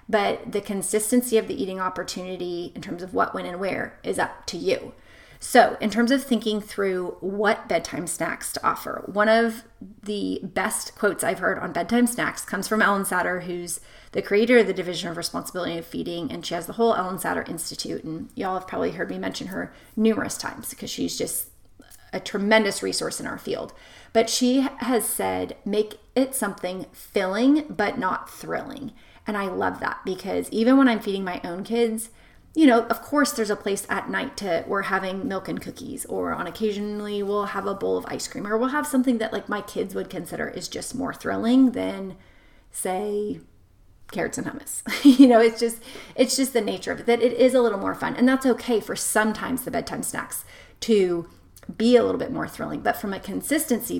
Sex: female